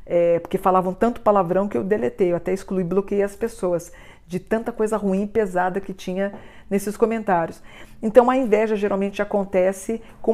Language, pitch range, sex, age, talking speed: Portuguese, 180-215 Hz, female, 50-69, 170 wpm